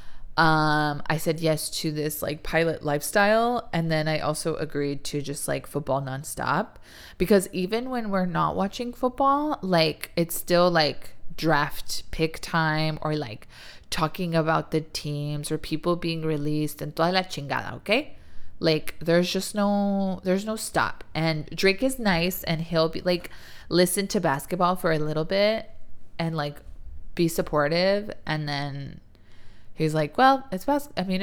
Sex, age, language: female, 20-39, English